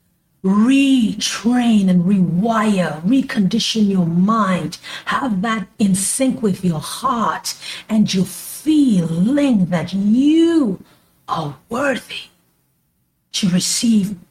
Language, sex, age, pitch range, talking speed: English, female, 50-69, 170-215 Hz, 90 wpm